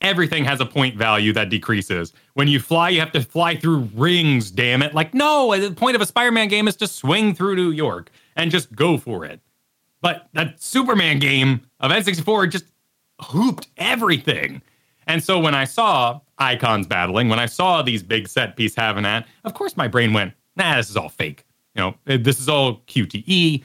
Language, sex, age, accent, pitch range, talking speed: English, male, 30-49, American, 110-155 Hz, 200 wpm